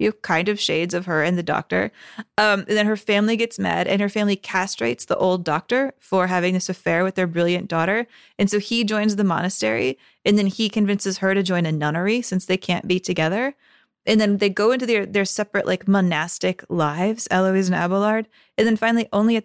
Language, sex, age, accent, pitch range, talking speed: English, female, 20-39, American, 175-215 Hz, 220 wpm